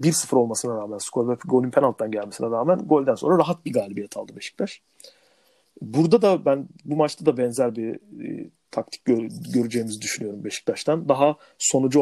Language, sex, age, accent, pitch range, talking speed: Turkish, male, 40-59, native, 120-165 Hz, 160 wpm